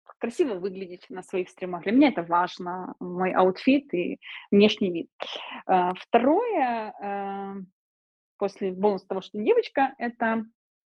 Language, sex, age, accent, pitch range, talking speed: Russian, female, 20-39, native, 180-225 Hz, 120 wpm